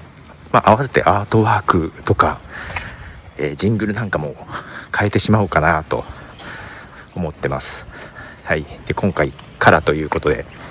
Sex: male